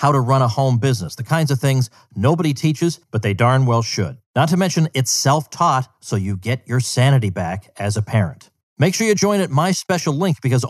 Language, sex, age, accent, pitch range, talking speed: English, male, 40-59, American, 105-145 Hz, 225 wpm